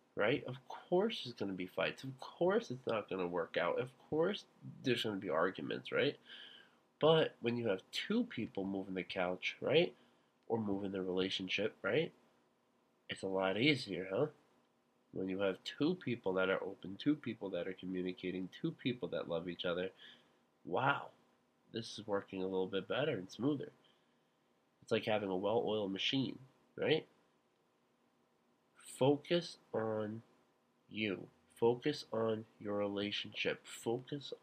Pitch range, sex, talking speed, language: 95-130 Hz, male, 155 wpm, English